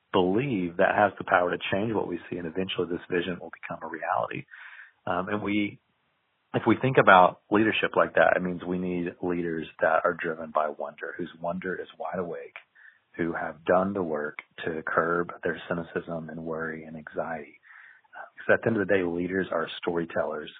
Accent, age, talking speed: American, 40-59, 190 wpm